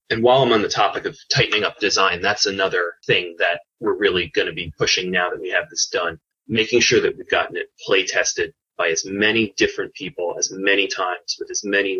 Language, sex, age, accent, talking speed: English, male, 30-49, American, 225 wpm